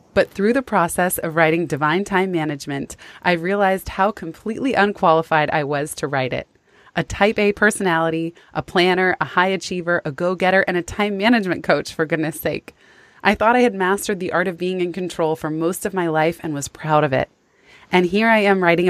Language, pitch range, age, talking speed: English, 155-195 Hz, 20-39, 205 wpm